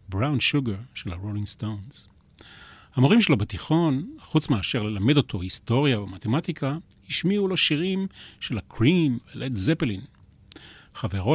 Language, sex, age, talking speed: Hebrew, male, 40-59, 115 wpm